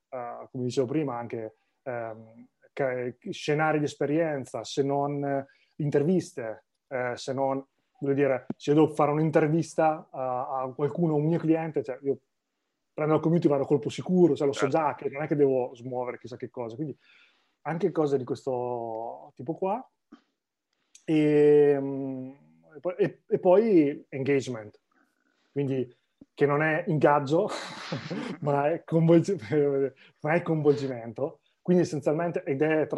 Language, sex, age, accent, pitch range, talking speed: Italian, male, 30-49, native, 130-155 Hz, 140 wpm